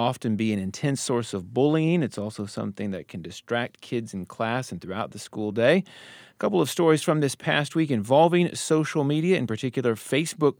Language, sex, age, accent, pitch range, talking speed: English, male, 40-59, American, 110-140 Hz, 200 wpm